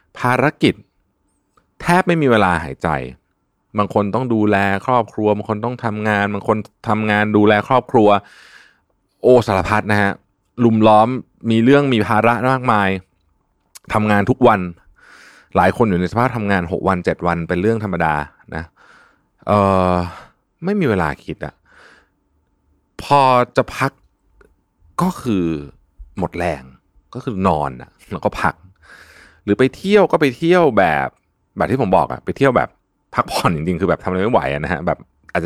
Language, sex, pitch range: Thai, male, 85-115 Hz